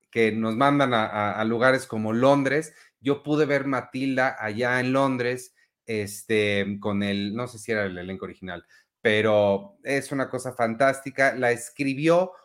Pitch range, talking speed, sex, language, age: 115-140 Hz, 160 wpm, male, Spanish, 30-49